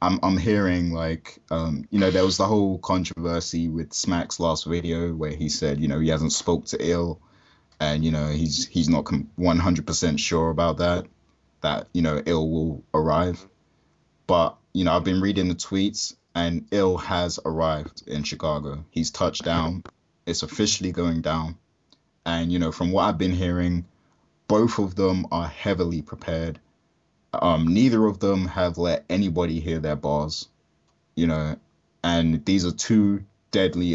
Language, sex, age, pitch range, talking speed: English, male, 20-39, 80-90 Hz, 165 wpm